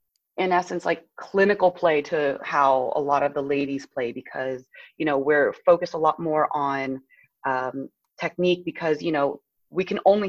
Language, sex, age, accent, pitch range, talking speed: English, female, 30-49, American, 145-190 Hz, 175 wpm